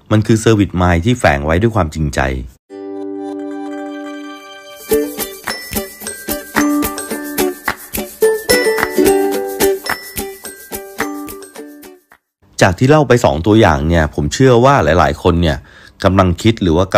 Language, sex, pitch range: Thai, male, 85-120 Hz